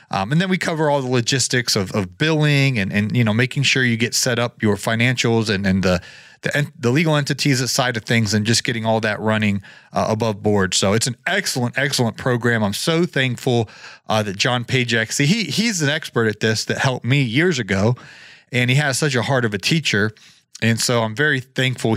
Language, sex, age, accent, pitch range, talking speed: English, male, 30-49, American, 105-135 Hz, 220 wpm